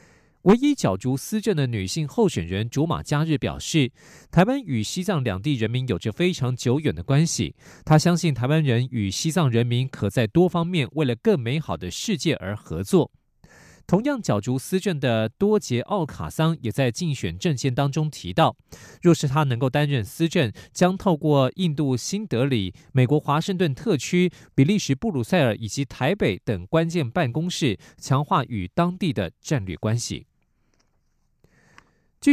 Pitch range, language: 120-170 Hz, Chinese